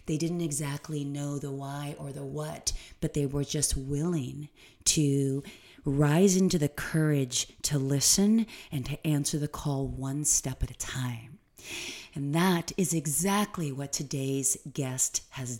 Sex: female